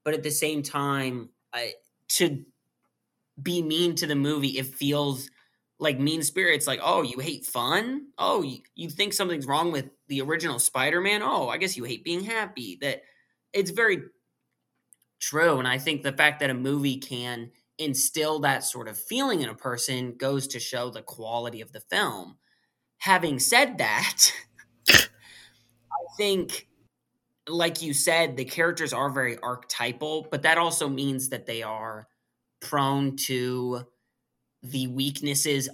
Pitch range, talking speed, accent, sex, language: 120-155 Hz, 155 wpm, American, male, English